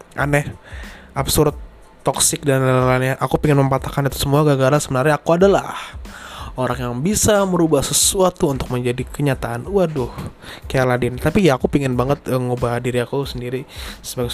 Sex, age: male, 20-39